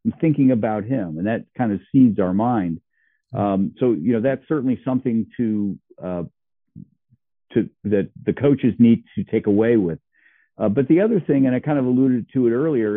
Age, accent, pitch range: 50-69, American, 105-135 Hz